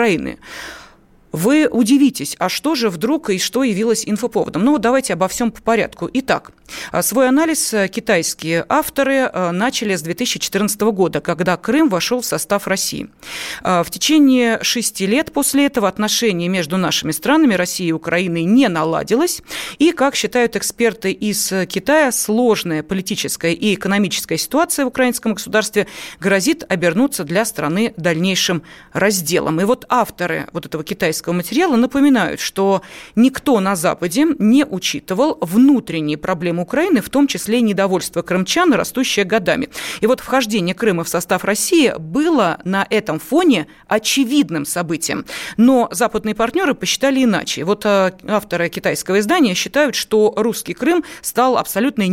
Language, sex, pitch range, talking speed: Russian, female, 185-260 Hz, 135 wpm